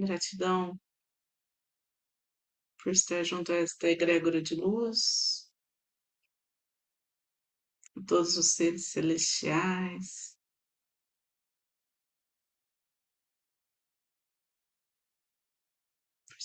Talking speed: 50 wpm